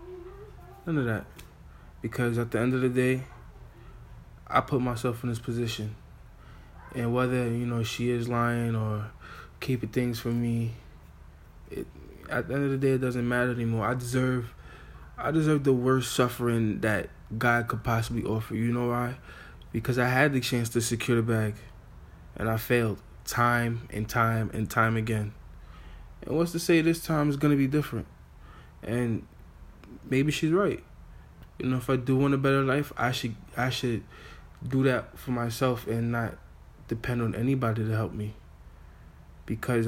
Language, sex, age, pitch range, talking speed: English, male, 20-39, 95-125 Hz, 170 wpm